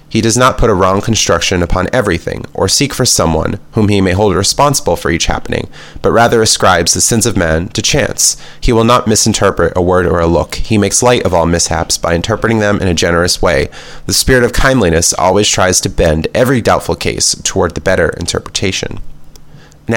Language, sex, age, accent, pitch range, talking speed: English, male, 30-49, American, 90-115 Hz, 205 wpm